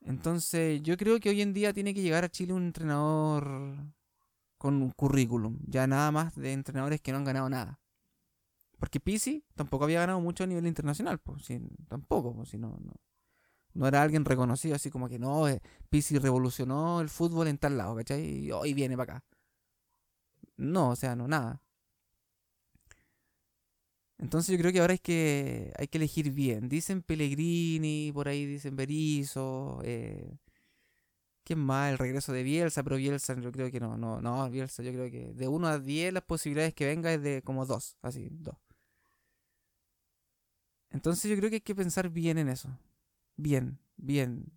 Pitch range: 130-165 Hz